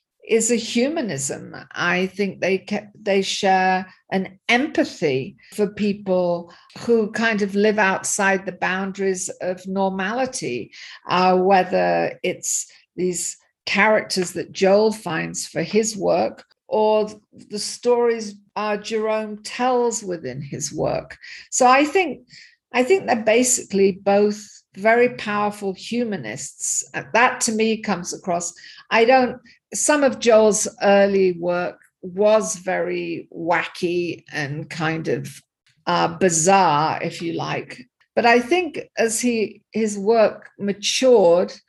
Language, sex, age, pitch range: English, female, 50-69, 185-220 Hz